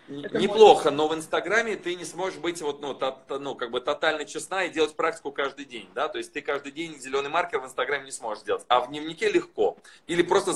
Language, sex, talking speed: Russian, male, 225 wpm